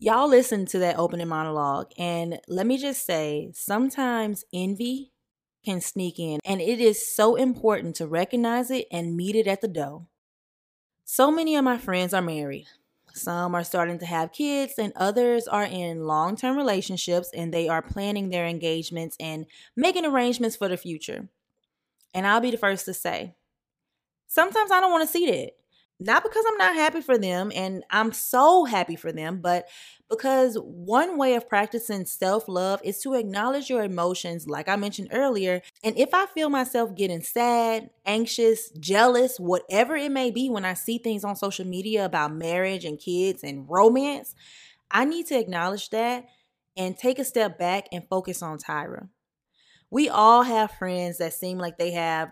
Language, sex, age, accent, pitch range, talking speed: English, female, 20-39, American, 175-245 Hz, 175 wpm